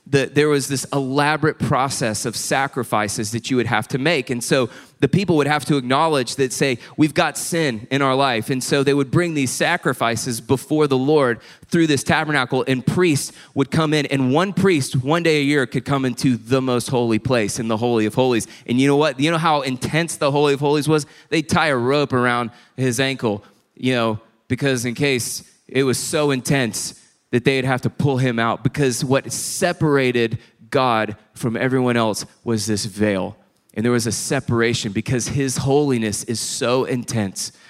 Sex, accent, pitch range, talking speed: male, American, 115-145 Hz, 195 wpm